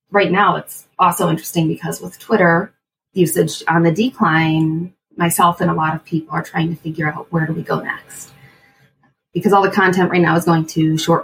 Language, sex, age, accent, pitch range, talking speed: English, female, 20-39, American, 160-190 Hz, 205 wpm